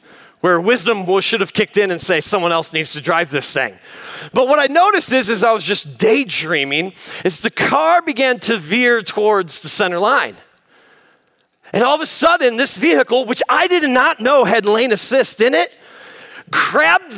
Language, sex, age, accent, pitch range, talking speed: English, male, 30-49, American, 225-325 Hz, 185 wpm